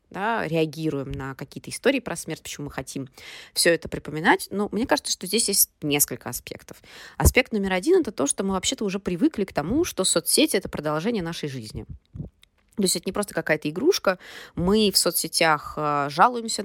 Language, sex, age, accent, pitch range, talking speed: Russian, female, 20-39, native, 155-205 Hz, 175 wpm